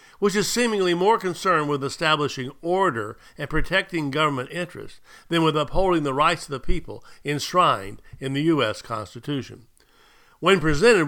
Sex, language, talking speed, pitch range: male, English, 145 wpm, 130-175 Hz